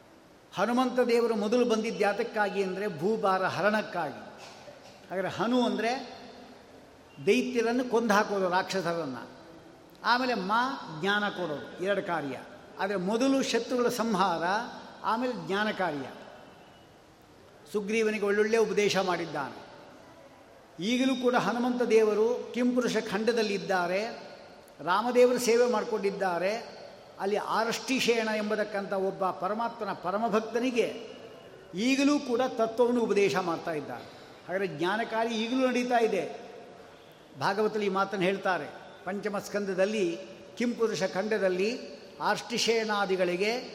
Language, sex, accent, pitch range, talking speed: Kannada, male, native, 190-235 Hz, 95 wpm